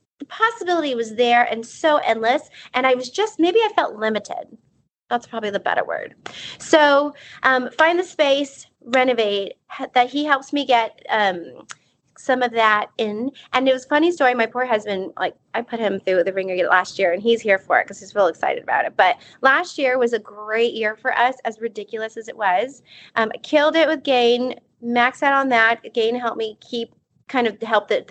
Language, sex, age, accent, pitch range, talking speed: English, female, 30-49, American, 225-310 Hz, 205 wpm